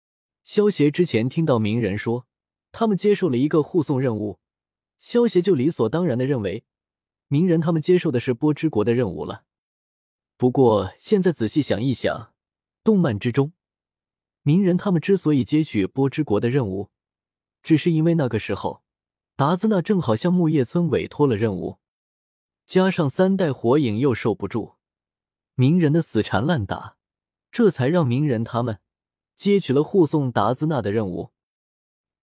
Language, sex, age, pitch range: Chinese, male, 20-39, 115-170 Hz